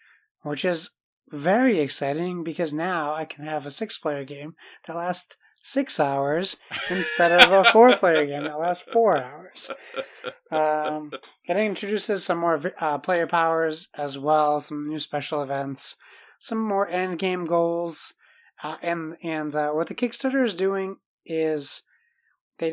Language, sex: English, male